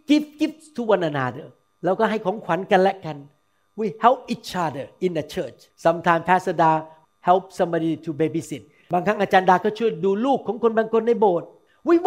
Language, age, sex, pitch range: Thai, 60-79, male, 165-235 Hz